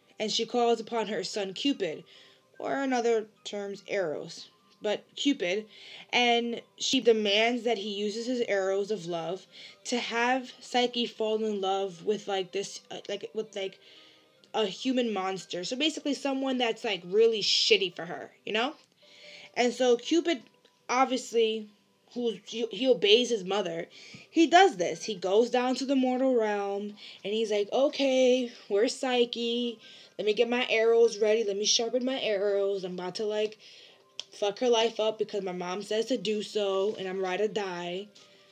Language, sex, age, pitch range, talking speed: English, female, 20-39, 205-250 Hz, 165 wpm